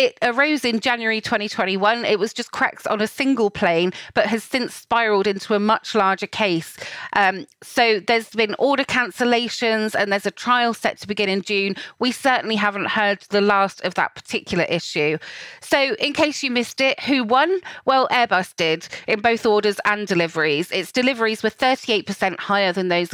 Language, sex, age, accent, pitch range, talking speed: English, female, 30-49, British, 195-245 Hz, 180 wpm